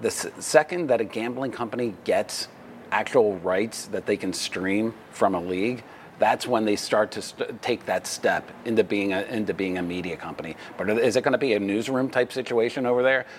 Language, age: English, 40-59